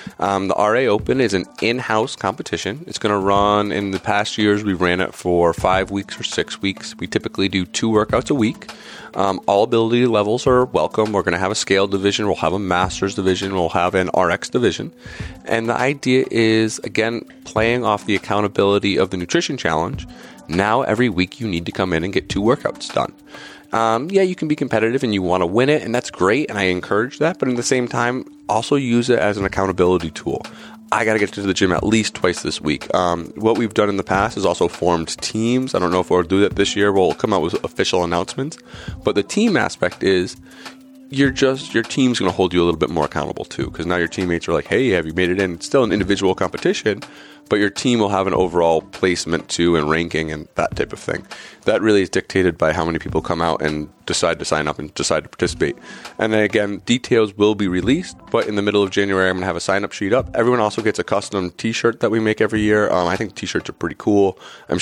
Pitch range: 90-110 Hz